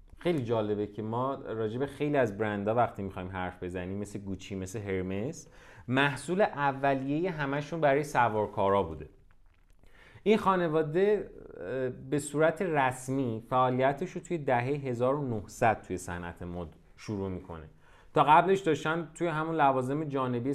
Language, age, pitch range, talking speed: Persian, 30-49, 110-155 Hz, 130 wpm